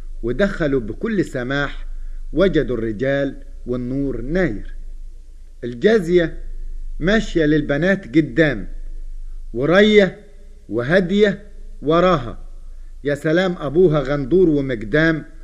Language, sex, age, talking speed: Arabic, male, 50-69, 75 wpm